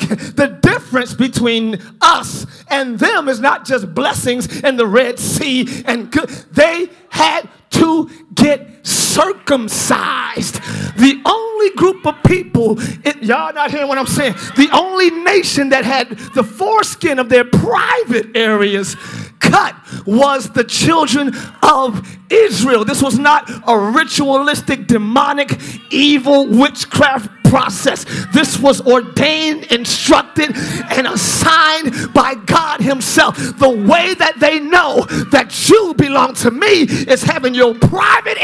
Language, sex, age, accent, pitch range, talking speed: English, male, 40-59, American, 235-320 Hz, 125 wpm